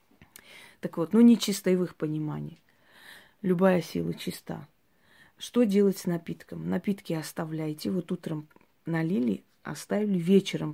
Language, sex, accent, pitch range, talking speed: Russian, female, native, 165-200 Hz, 130 wpm